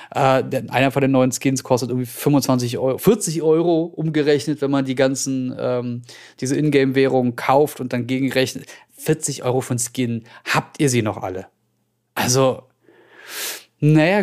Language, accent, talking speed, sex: German, German, 145 wpm, male